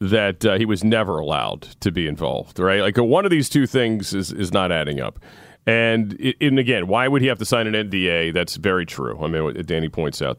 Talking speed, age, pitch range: 250 wpm, 40-59, 90-120 Hz